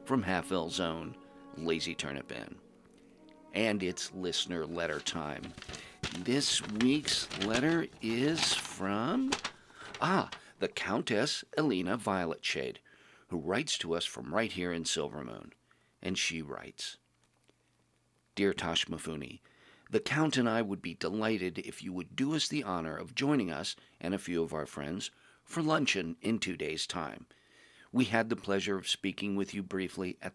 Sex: male